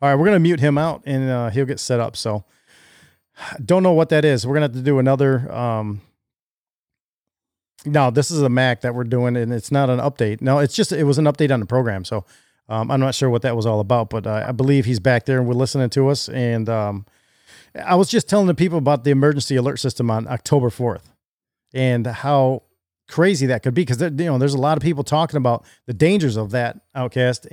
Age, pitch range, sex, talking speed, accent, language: 40-59, 120-145 Hz, male, 240 wpm, American, English